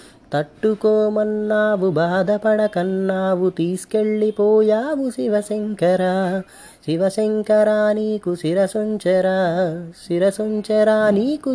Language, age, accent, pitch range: Telugu, 20-39, native, 185-215 Hz